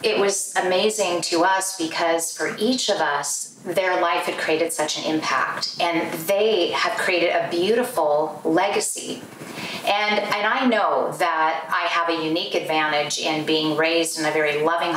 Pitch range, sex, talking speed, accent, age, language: 160-205 Hz, female, 165 wpm, American, 30-49, English